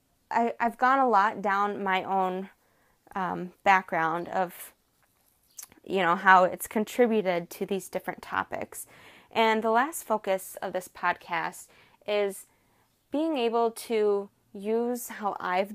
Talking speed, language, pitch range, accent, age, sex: 125 wpm, English, 190-245 Hz, American, 20-39, female